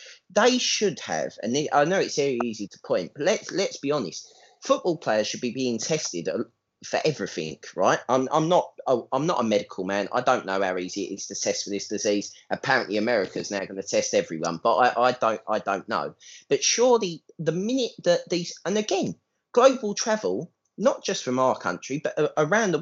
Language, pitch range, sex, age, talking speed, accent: English, 110-170 Hz, male, 30-49, 205 wpm, British